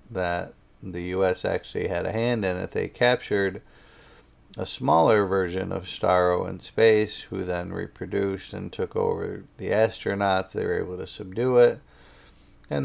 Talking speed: 155 wpm